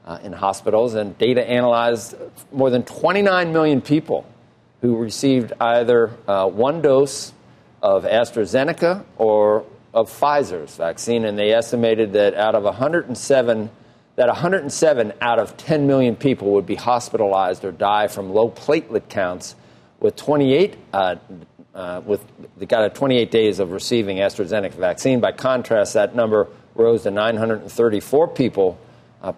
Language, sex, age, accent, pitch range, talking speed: English, male, 50-69, American, 100-140 Hz, 140 wpm